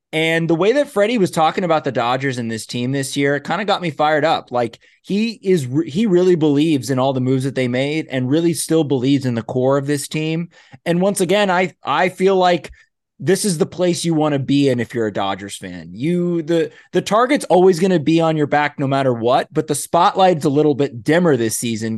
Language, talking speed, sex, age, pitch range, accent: English, 245 wpm, male, 20-39, 120-160 Hz, American